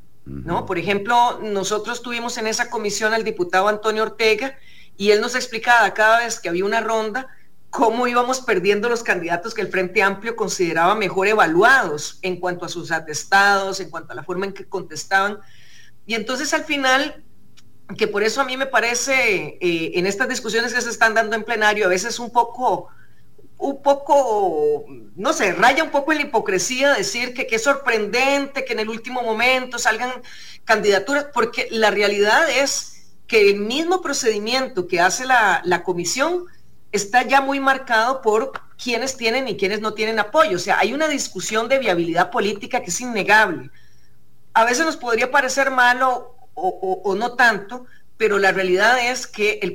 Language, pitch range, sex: English, 200-255 Hz, female